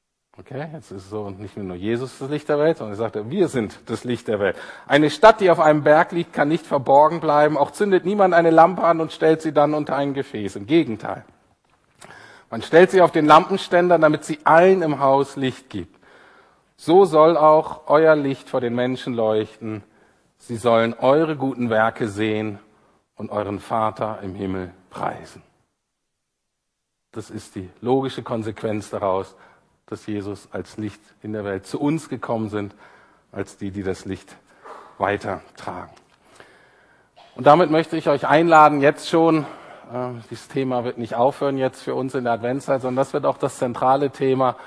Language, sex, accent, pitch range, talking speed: German, male, German, 110-150 Hz, 175 wpm